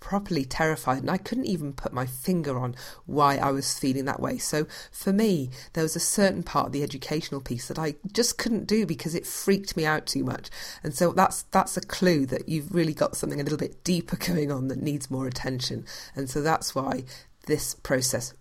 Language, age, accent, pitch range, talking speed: English, 40-59, British, 130-180 Hz, 220 wpm